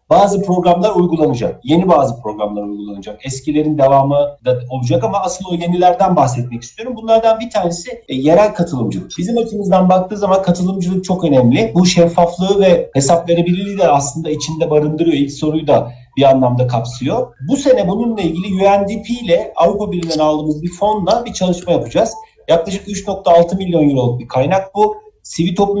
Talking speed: 160 wpm